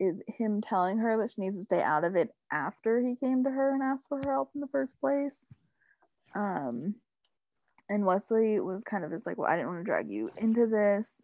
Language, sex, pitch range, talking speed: English, female, 190-245 Hz, 230 wpm